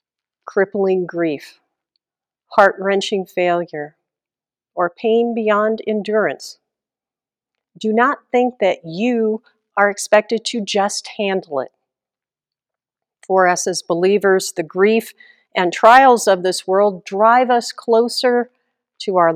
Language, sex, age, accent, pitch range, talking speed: English, female, 50-69, American, 180-230 Hz, 110 wpm